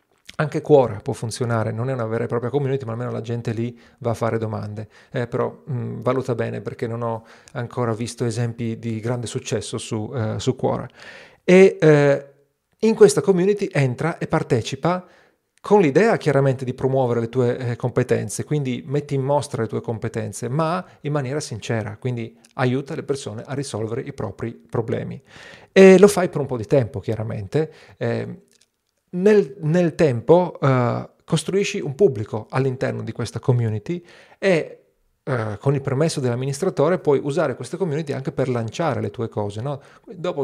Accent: native